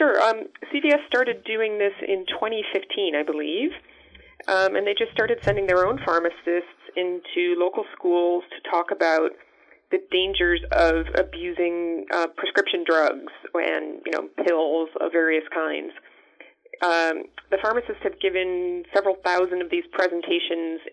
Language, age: English, 30-49